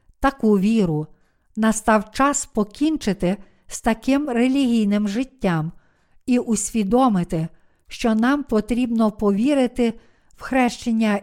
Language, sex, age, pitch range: Ukrainian, female, 50-69, 200-255 Hz